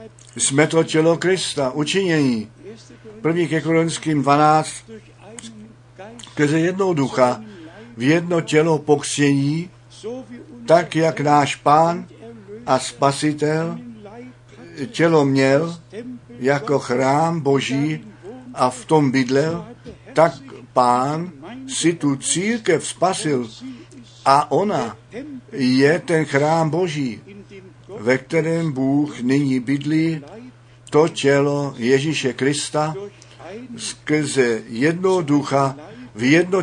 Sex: male